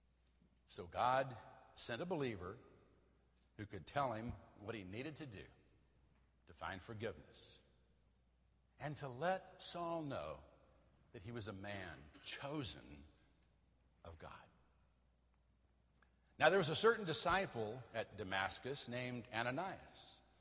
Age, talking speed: 60-79, 120 wpm